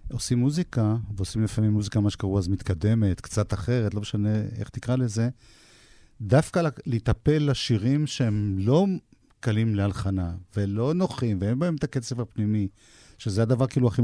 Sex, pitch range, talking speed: male, 100-130 Hz, 145 wpm